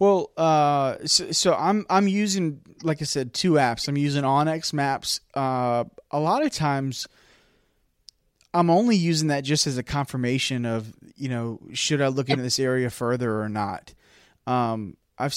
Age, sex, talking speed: 20-39, male, 170 wpm